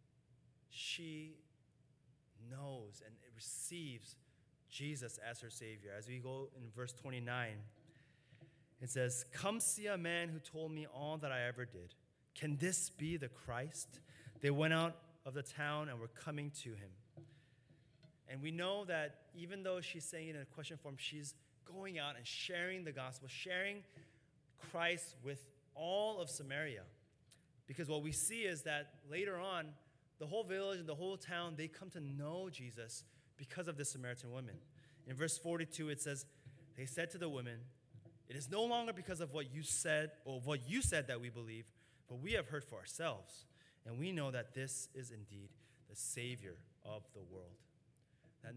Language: English